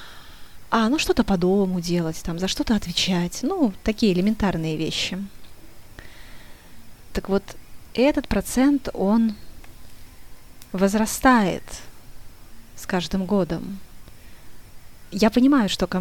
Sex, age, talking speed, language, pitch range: female, 20-39, 100 wpm, Russian, 175-205 Hz